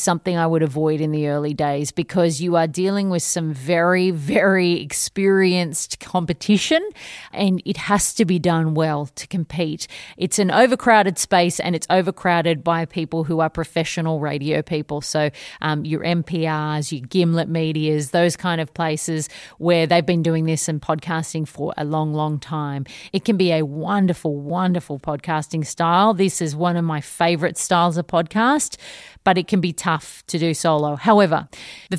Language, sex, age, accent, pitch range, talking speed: English, female, 30-49, Australian, 160-185 Hz, 170 wpm